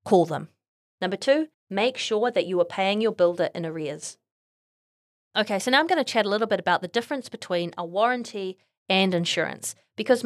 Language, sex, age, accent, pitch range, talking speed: English, female, 30-49, Australian, 175-235 Hz, 195 wpm